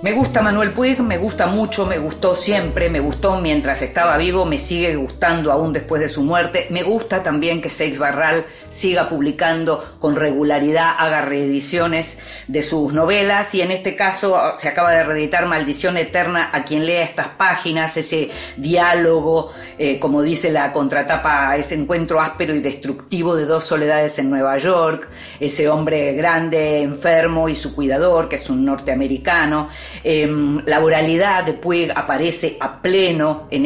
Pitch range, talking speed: 150-180 Hz, 160 wpm